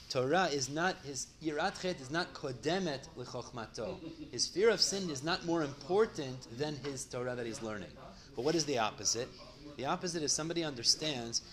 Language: English